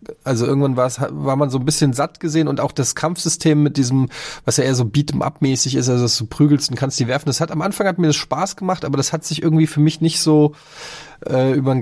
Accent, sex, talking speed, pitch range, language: German, male, 275 wpm, 120-155 Hz, German